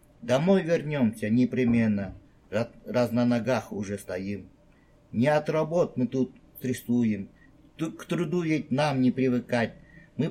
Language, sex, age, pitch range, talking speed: Russian, male, 50-69, 115-150 Hz, 120 wpm